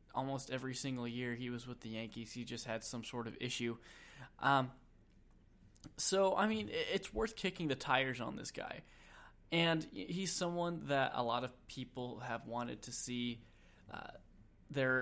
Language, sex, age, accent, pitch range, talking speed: English, male, 10-29, American, 115-140 Hz, 170 wpm